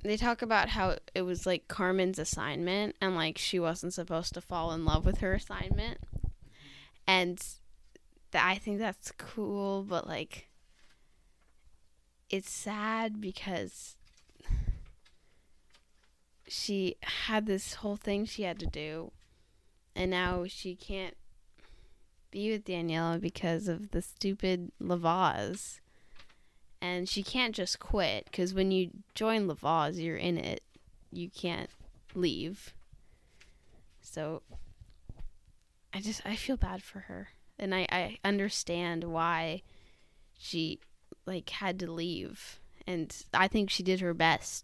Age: 10-29